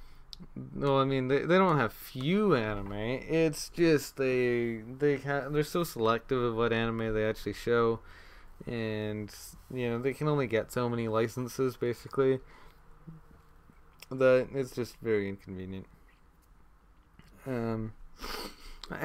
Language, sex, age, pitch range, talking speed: English, male, 20-39, 110-140 Hz, 125 wpm